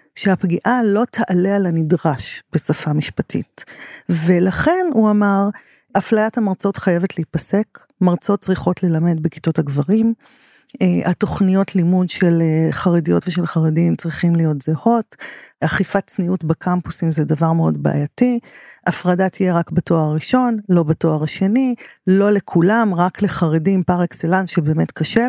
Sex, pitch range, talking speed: female, 175-230 Hz, 120 wpm